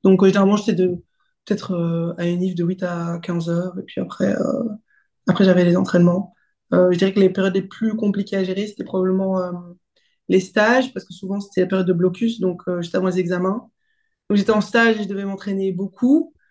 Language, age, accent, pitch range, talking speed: French, 20-39, French, 185-220 Hz, 220 wpm